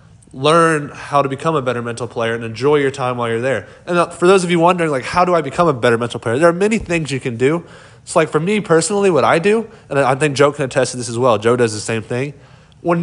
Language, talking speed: English, 280 wpm